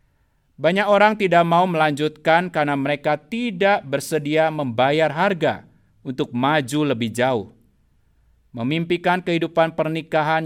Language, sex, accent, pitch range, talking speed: Indonesian, male, native, 130-180 Hz, 105 wpm